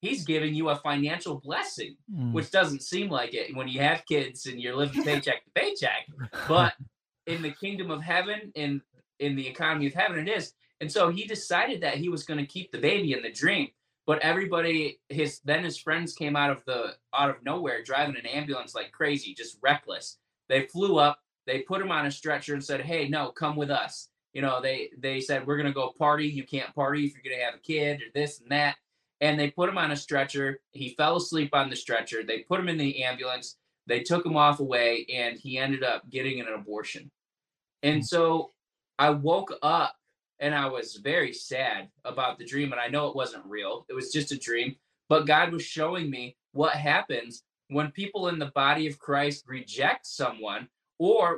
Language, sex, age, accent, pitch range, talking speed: English, male, 20-39, American, 135-160 Hz, 215 wpm